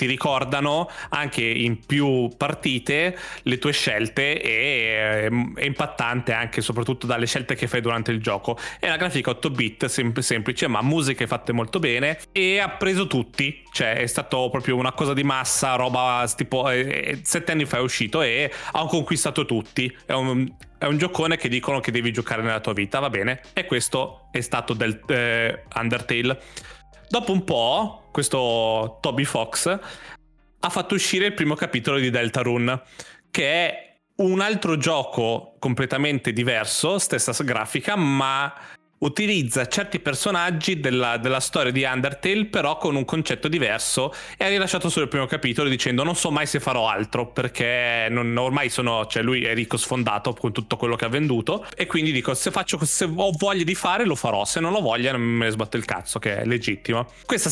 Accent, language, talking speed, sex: native, Italian, 175 wpm, male